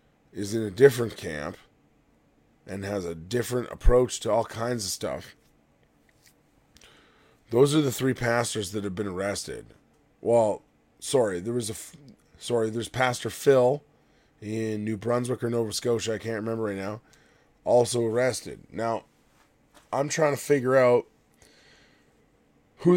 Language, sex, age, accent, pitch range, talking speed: English, male, 20-39, American, 110-135 Hz, 140 wpm